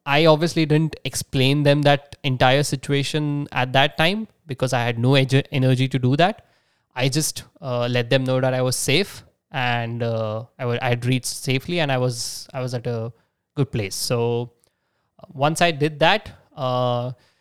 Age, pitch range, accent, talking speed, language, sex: 20-39, 120-140 Hz, Indian, 170 wpm, English, male